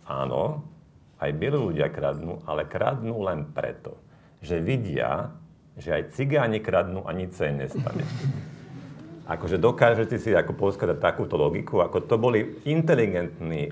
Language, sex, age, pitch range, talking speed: Slovak, male, 50-69, 80-130 Hz, 130 wpm